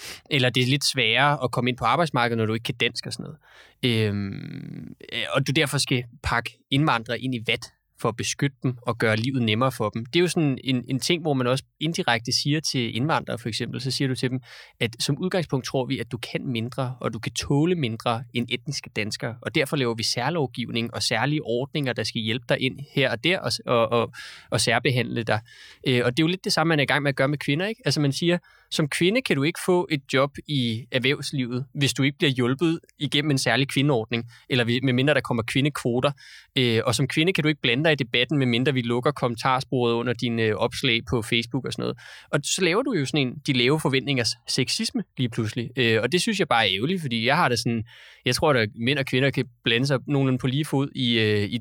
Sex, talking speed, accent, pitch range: male, 240 wpm, native, 120-145 Hz